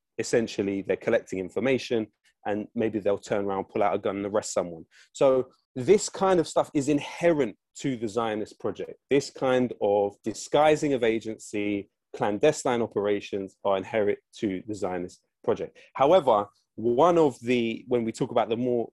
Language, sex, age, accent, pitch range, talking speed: English, male, 20-39, British, 105-135 Hz, 160 wpm